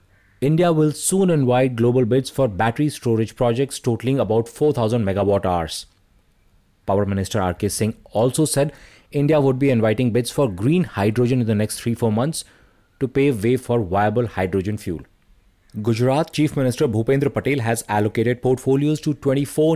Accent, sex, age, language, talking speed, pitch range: Indian, male, 30-49, English, 155 wpm, 100-135 Hz